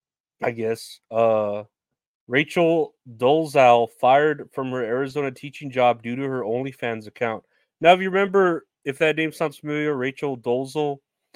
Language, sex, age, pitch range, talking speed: English, male, 30-49, 120-145 Hz, 145 wpm